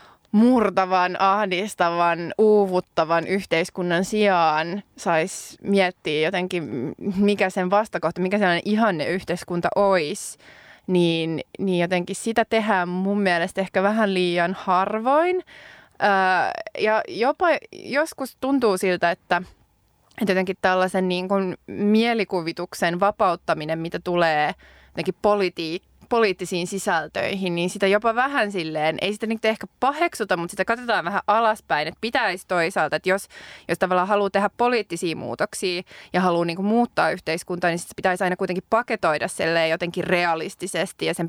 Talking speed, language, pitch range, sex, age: 125 wpm, Finnish, 170-205 Hz, female, 20-39